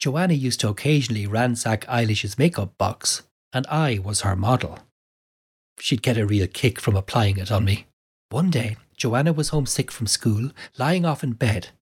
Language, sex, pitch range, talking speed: English, male, 110-140 Hz, 170 wpm